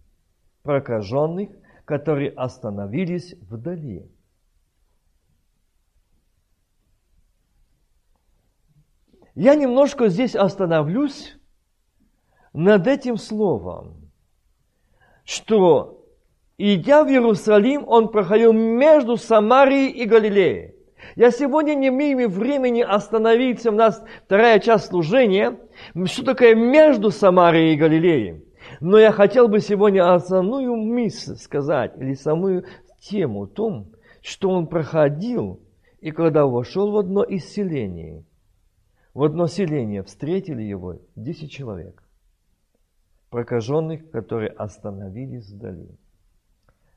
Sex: male